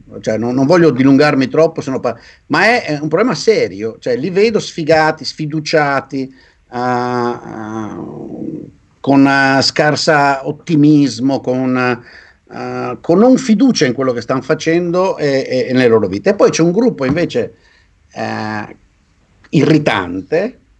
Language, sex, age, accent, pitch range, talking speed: Italian, male, 50-69, native, 125-160 Hz, 115 wpm